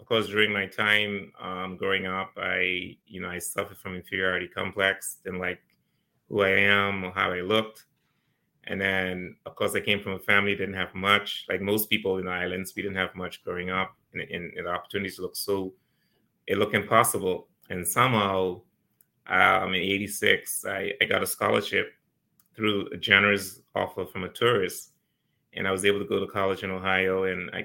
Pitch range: 95-100 Hz